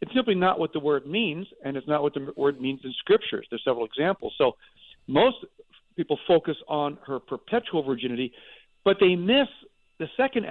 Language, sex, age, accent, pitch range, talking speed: English, male, 50-69, American, 135-195 Hz, 185 wpm